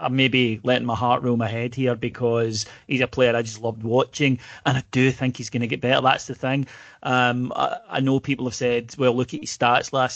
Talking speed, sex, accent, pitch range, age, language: 250 wpm, male, British, 125-155 Hz, 30-49, English